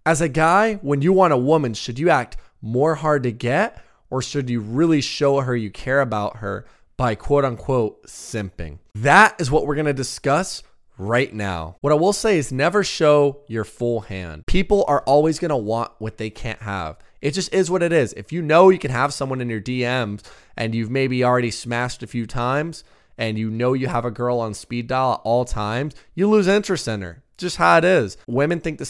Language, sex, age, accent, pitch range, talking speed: English, male, 20-39, American, 115-155 Hz, 220 wpm